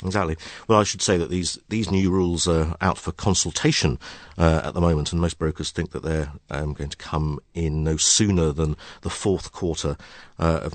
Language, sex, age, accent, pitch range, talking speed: English, male, 50-69, British, 75-105 Hz, 205 wpm